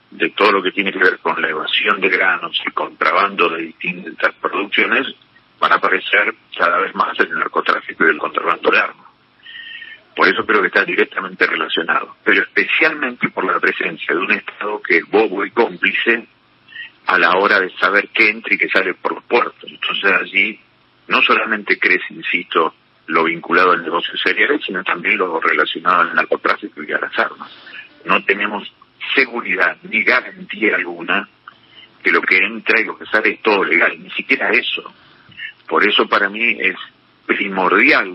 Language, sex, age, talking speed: Spanish, male, 50-69, 175 wpm